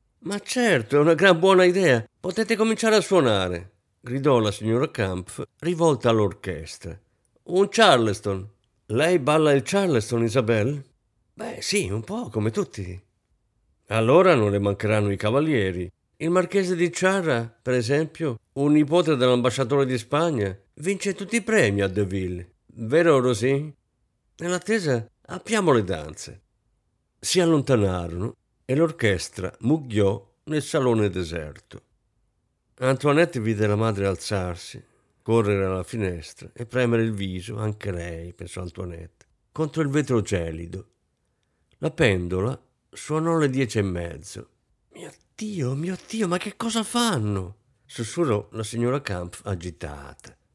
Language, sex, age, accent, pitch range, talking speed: Italian, male, 50-69, native, 100-160 Hz, 125 wpm